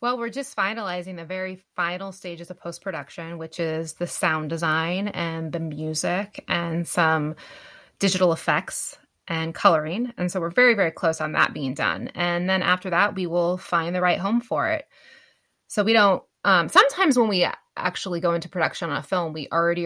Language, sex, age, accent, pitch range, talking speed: English, female, 20-39, American, 160-195 Hz, 185 wpm